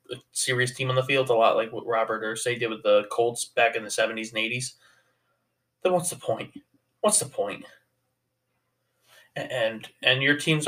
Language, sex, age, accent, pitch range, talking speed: English, male, 20-39, American, 115-140 Hz, 185 wpm